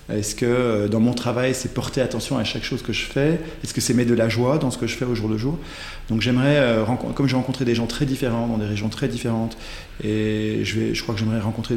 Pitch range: 110-135 Hz